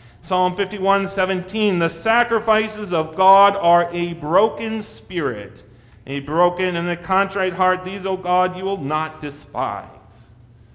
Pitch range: 120-175 Hz